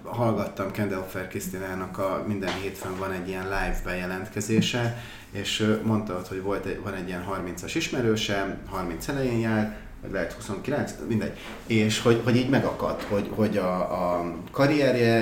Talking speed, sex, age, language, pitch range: 140 wpm, male, 30-49, Hungarian, 95-115 Hz